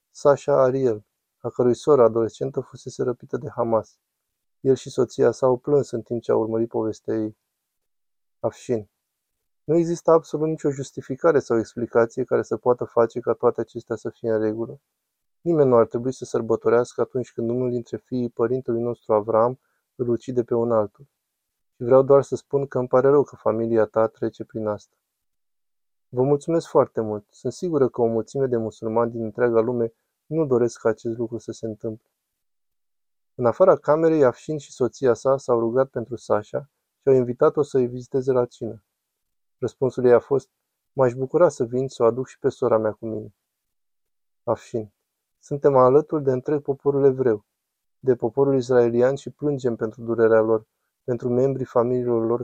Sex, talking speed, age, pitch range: male, 175 wpm, 20-39, 115-135 Hz